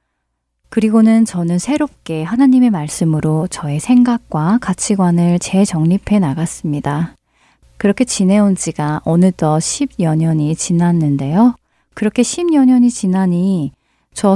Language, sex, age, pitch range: Korean, female, 30-49, 160-225 Hz